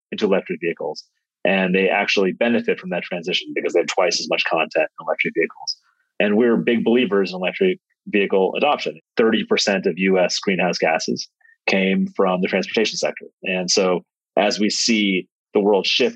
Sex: male